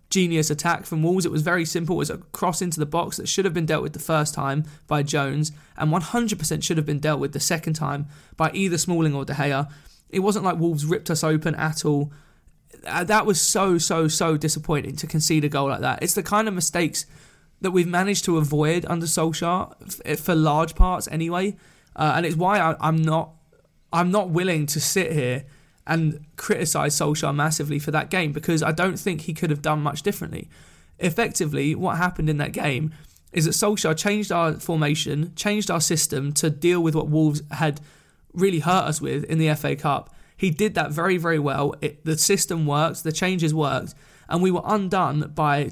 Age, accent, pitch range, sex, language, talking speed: 20-39, British, 150-180 Hz, male, English, 205 wpm